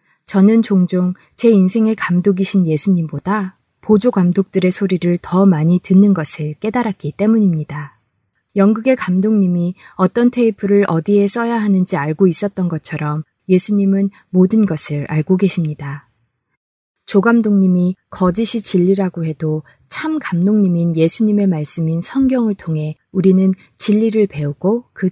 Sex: female